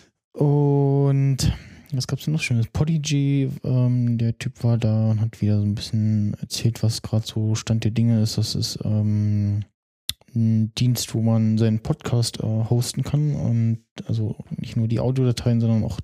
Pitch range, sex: 110-130 Hz, male